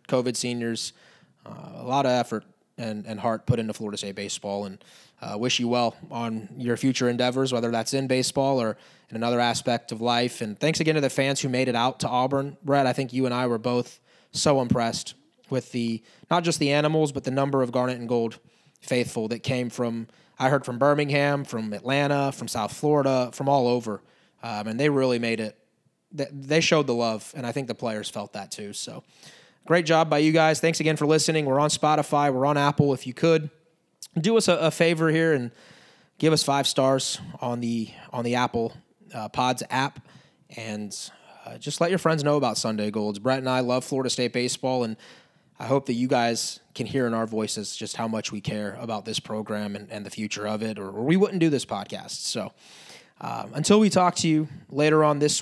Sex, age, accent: male, 20-39, American